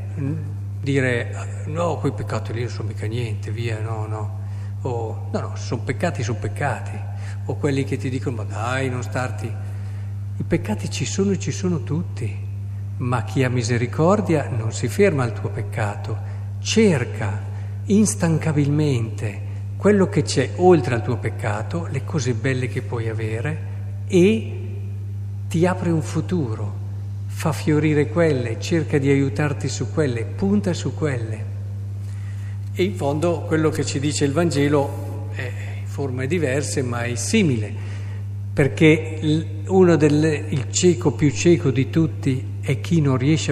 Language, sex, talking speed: Italian, male, 145 wpm